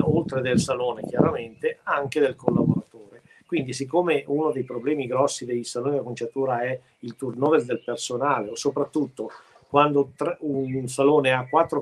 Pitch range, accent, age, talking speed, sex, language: 130-155 Hz, native, 50-69, 145 wpm, male, Italian